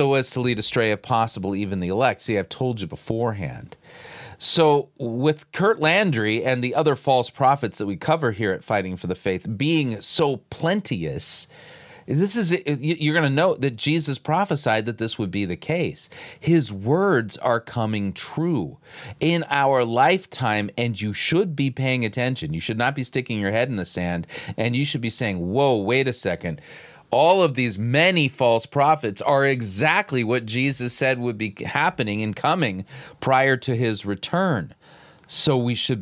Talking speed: 175 wpm